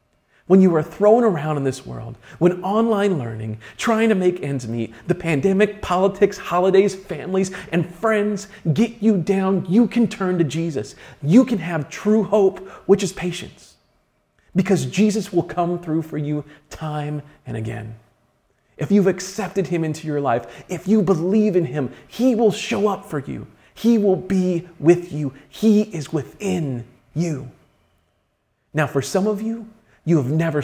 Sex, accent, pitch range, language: male, American, 135-190 Hz, English